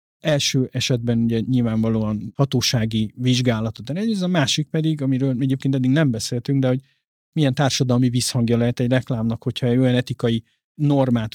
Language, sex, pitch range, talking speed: Hungarian, male, 115-140 Hz, 145 wpm